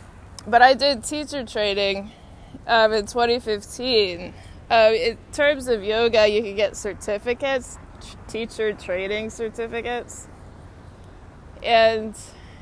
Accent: American